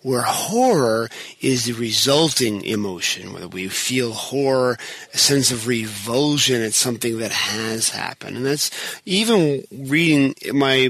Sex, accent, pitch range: male, American, 115-140 Hz